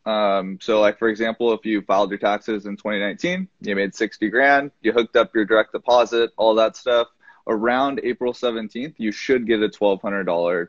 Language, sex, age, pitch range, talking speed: English, male, 20-39, 100-115 Hz, 195 wpm